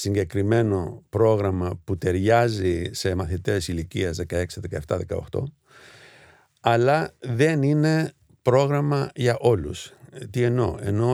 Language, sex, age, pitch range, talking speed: Greek, male, 50-69, 95-125 Hz, 100 wpm